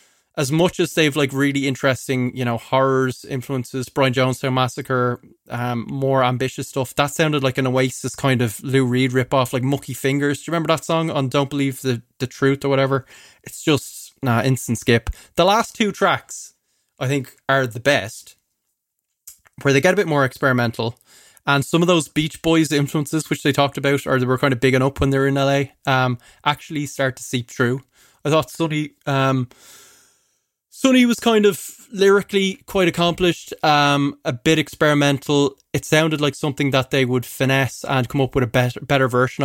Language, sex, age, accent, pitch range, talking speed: English, male, 20-39, Irish, 130-150 Hz, 190 wpm